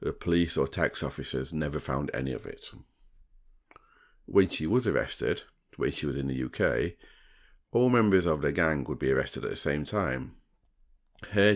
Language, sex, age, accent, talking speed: English, male, 40-59, British, 170 wpm